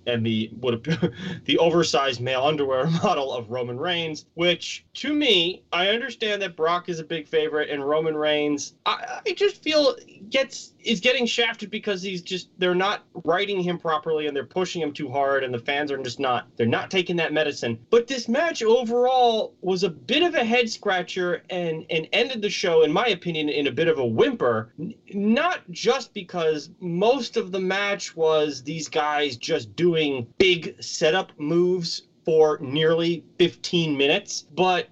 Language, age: English, 30-49